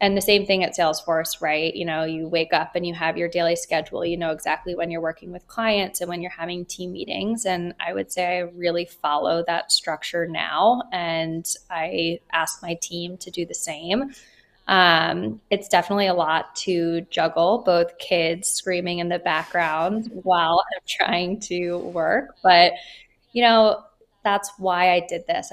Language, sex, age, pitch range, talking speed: English, female, 20-39, 165-185 Hz, 180 wpm